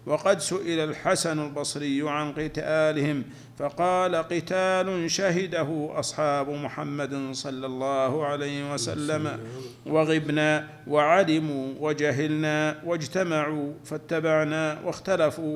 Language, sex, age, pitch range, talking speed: Arabic, male, 50-69, 145-160 Hz, 80 wpm